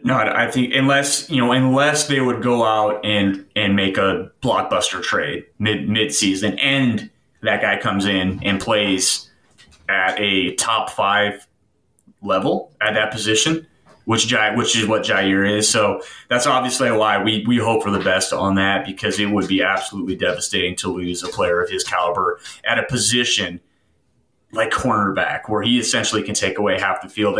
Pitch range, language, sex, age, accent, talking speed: 100-125 Hz, English, male, 30-49, American, 175 wpm